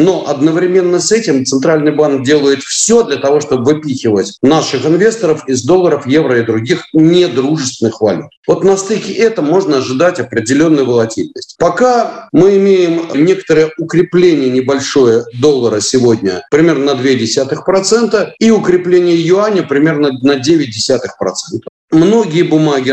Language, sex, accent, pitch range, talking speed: Russian, male, native, 135-180 Hz, 125 wpm